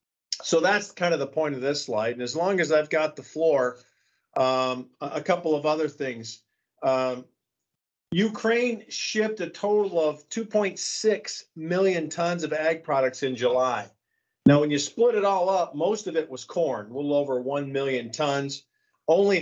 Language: English